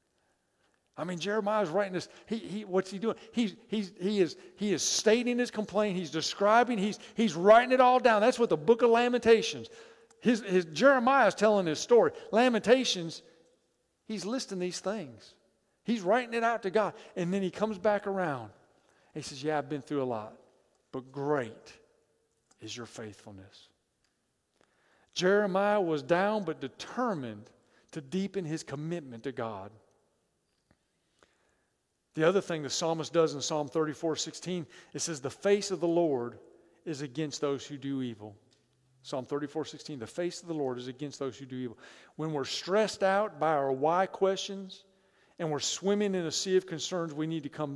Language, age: English, 50-69